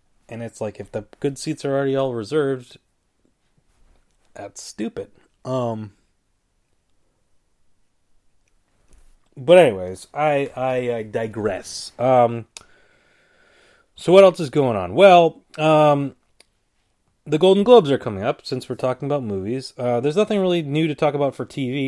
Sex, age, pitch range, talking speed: male, 30-49, 105-155 Hz, 135 wpm